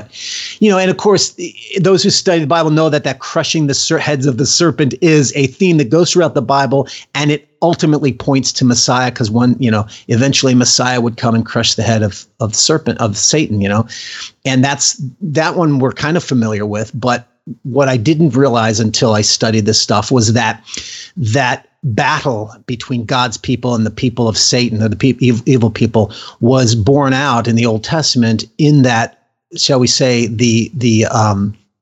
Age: 40-59